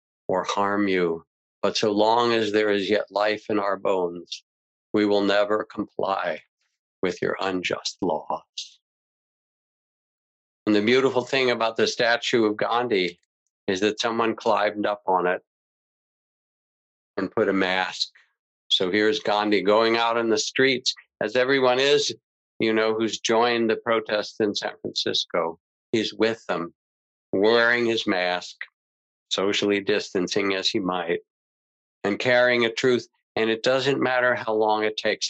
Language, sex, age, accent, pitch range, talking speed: English, male, 50-69, American, 100-115 Hz, 145 wpm